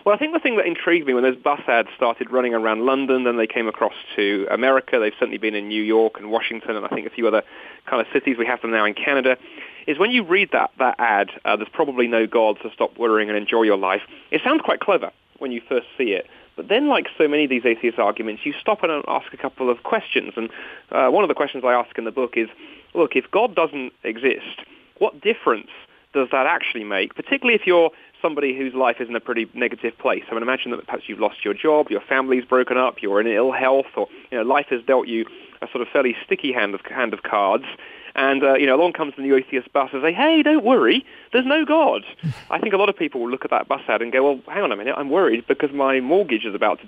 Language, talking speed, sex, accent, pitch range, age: English, 260 wpm, male, British, 115-160 Hz, 30-49